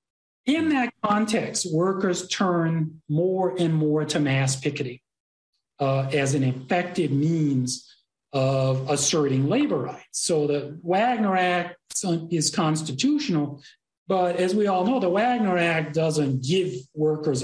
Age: 40-59